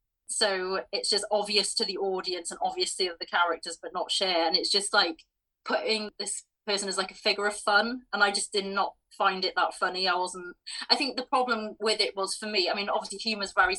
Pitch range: 175-210 Hz